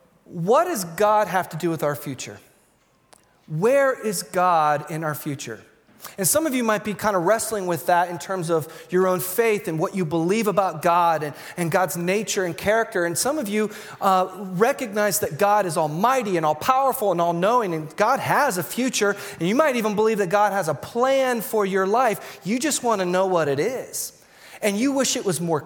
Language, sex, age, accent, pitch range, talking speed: English, male, 30-49, American, 160-215 Hz, 210 wpm